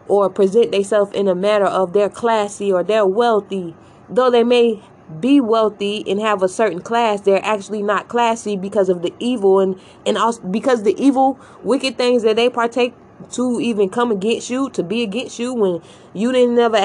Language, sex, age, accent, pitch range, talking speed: English, female, 20-39, American, 195-235 Hz, 190 wpm